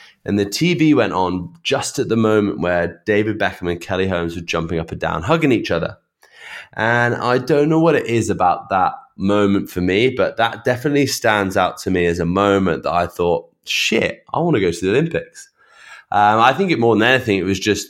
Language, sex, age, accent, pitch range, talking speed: English, male, 20-39, British, 95-115 Hz, 220 wpm